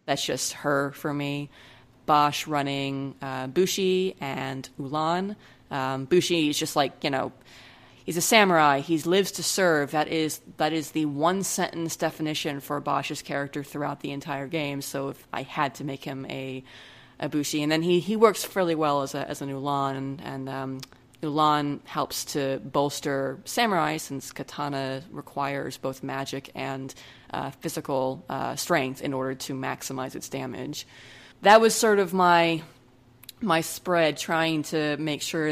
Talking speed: 160 wpm